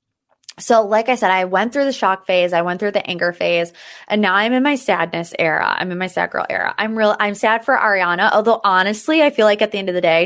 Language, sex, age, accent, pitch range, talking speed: English, female, 20-39, American, 185-240 Hz, 270 wpm